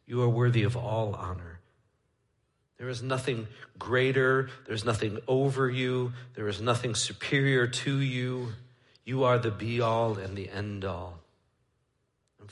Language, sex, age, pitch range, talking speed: English, male, 50-69, 95-125 Hz, 140 wpm